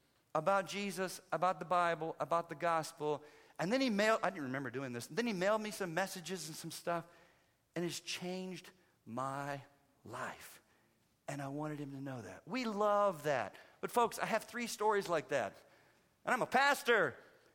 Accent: American